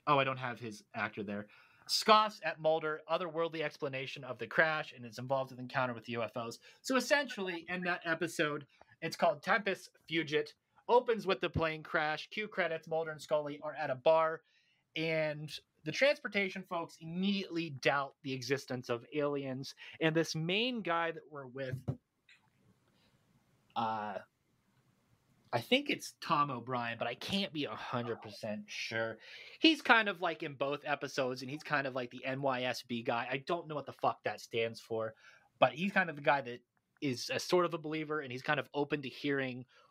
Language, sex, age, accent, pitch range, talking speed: English, male, 30-49, American, 130-175 Hz, 180 wpm